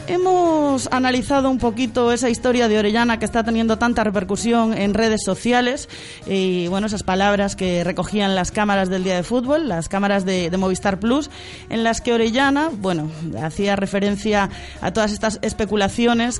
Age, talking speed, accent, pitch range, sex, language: 20-39, 165 wpm, Spanish, 195-235 Hz, female, Spanish